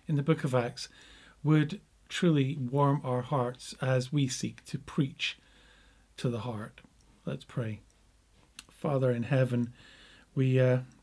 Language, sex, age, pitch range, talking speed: English, male, 40-59, 120-150 Hz, 135 wpm